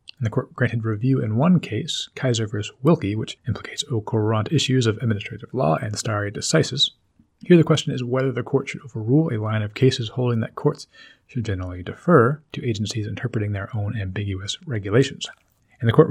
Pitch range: 105-125 Hz